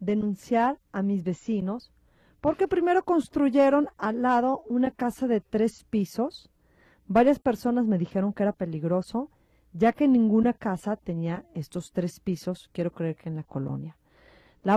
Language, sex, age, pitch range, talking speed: Spanish, female, 40-59, 195-255 Hz, 145 wpm